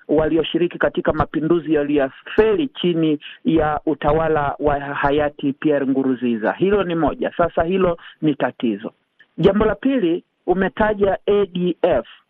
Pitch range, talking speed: 160-205 Hz, 115 wpm